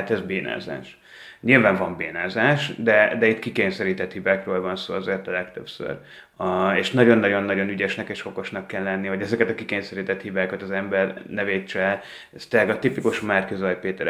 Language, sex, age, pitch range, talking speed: Hungarian, male, 30-49, 95-115 Hz, 160 wpm